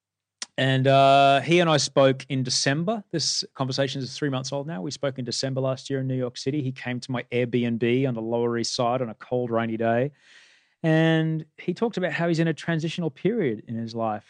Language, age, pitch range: English, 30-49, 115-140 Hz